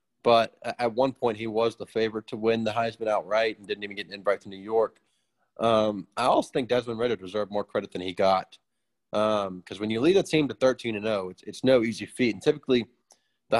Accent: American